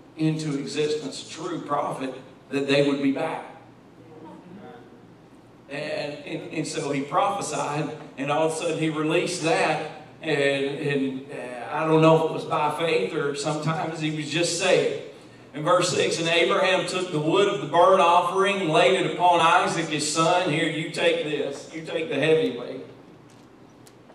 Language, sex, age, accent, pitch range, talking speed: English, male, 40-59, American, 140-165 Hz, 170 wpm